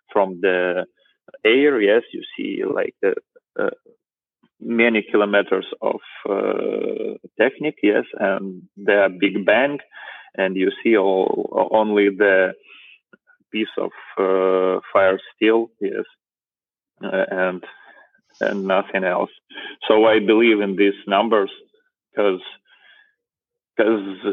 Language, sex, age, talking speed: English, male, 30-49, 105 wpm